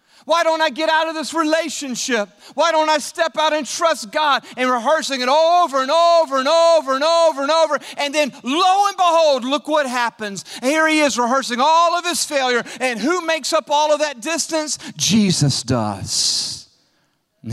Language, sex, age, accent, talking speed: English, male, 40-59, American, 190 wpm